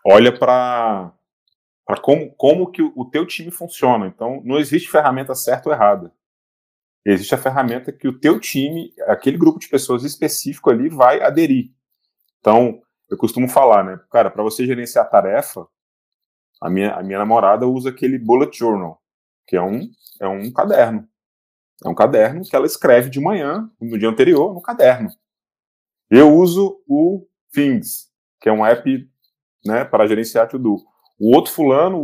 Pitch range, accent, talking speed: 110-175 Hz, Brazilian, 155 wpm